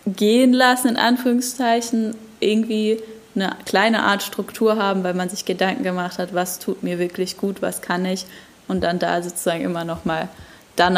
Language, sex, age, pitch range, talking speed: German, female, 10-29, 180-225 Hz, 170 wpm